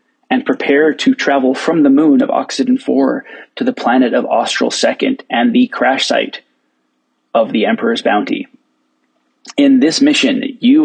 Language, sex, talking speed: English, male, 155 wpm